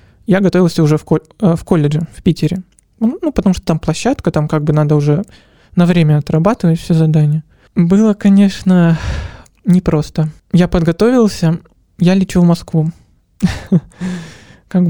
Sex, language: male, Russian